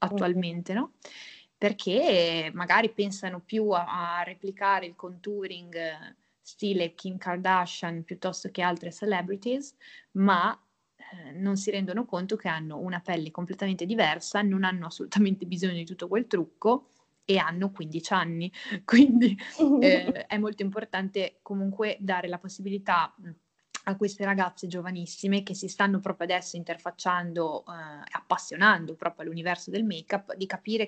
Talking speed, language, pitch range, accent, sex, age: 135 wpm, Italian, 170-200 Hz, native, female, 20-39